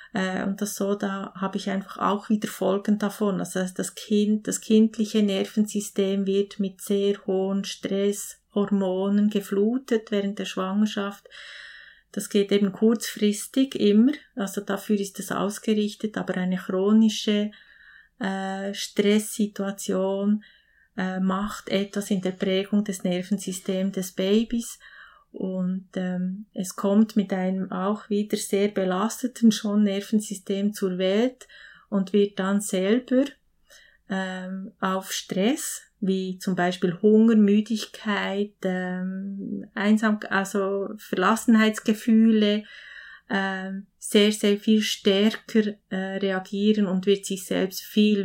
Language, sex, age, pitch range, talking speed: German, female, 30-49, 190-215 Hz, 115 wpm